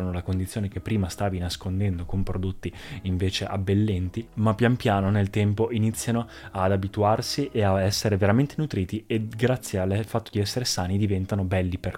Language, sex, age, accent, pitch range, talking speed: Italian, male, 20-39, native, 95-110 Hz, 165 wpm